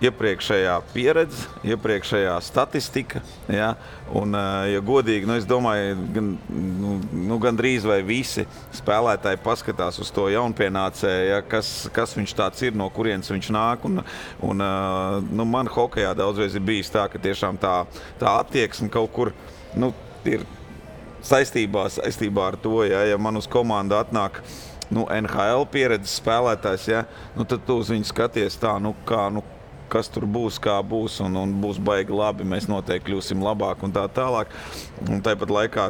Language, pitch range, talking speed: English, 100-115 Hz, 160 wpm